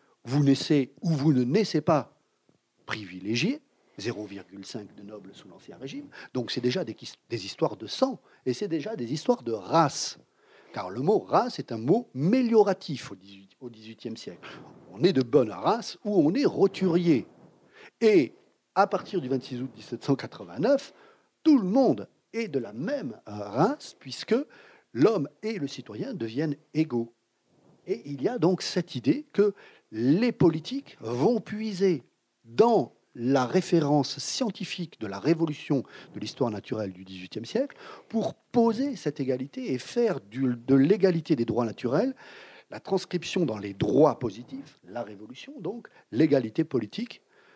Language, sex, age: French, male, 50-69